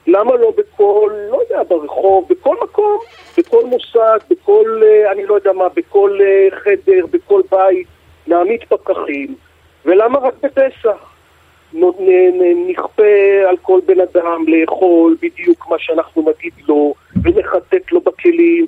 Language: Hebrew